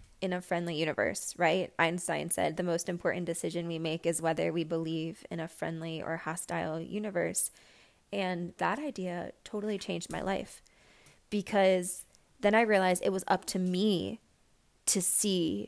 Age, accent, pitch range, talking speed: 20-39, American, 180-215 Hz, 155 wpm